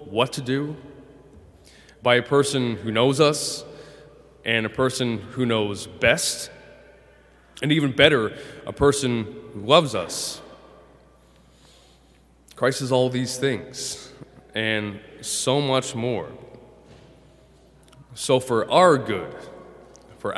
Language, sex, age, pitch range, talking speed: English, male, 20-39, 110-140 Hz, 110 wpm